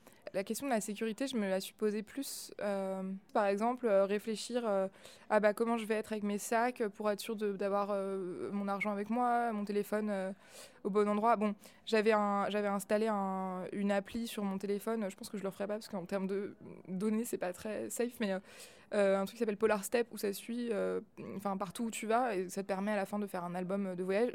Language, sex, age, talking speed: French, female, 20-39, 245 wpm